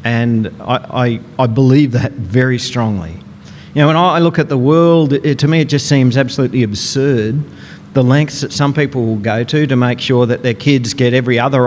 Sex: male